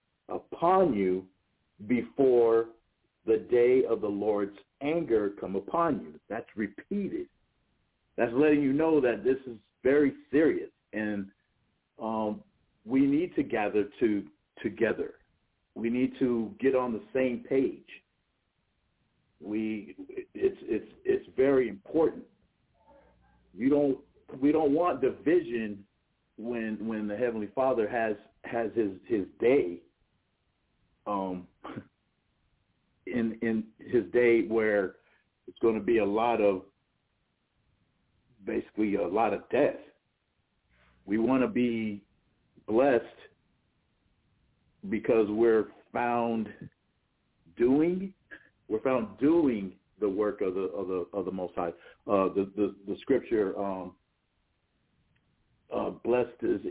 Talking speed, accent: 115 wpm, American